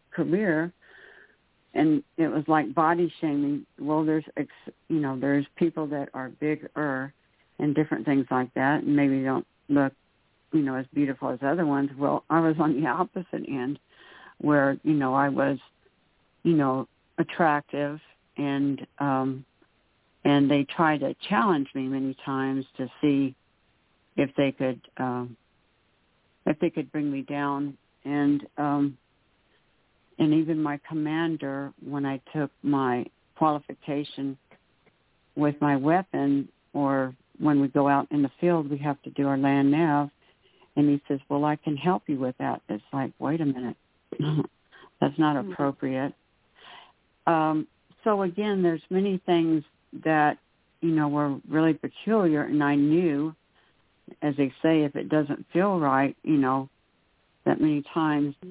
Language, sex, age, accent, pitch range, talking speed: English, female, 60-79, American, 135-155 Hz, 150 wpm